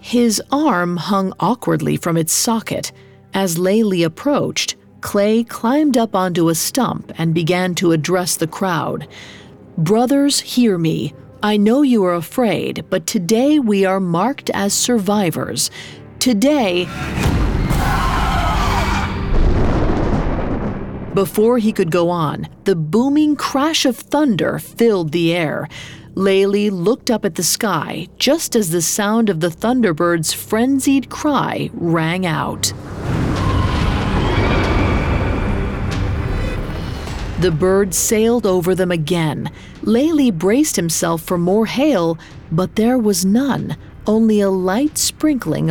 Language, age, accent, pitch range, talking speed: English, 40-59, American, 155-225 Hz, 115 wpm